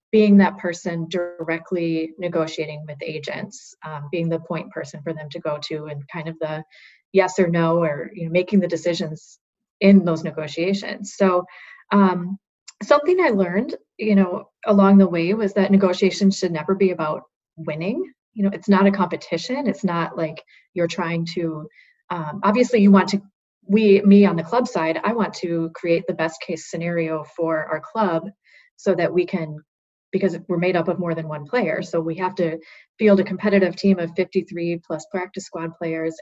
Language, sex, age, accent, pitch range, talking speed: English, female, 30-49, American, 165-200 Hz, 185 wpm